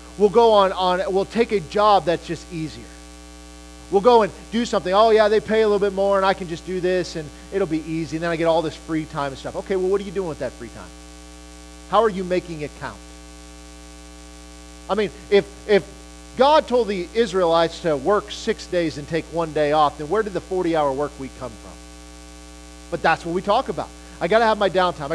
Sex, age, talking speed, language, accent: male, 40-59, 230 wpm, English, American